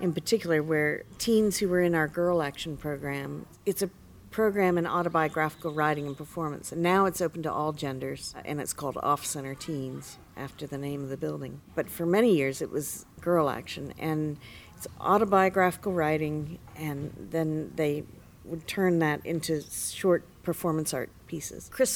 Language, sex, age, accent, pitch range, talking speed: English, female, 50-69, American, 145-180 Hz, 165 wpm